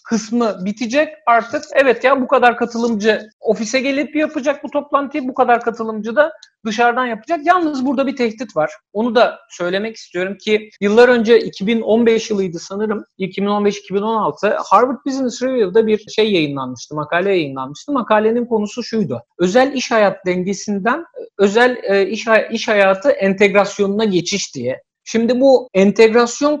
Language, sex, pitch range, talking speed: Turkish, male, 195-245 Hz, 140 wpm